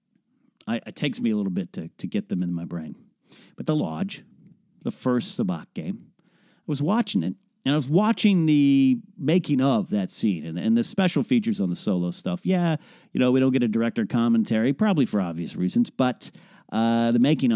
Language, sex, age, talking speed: English, male, 40-59, 205 wpm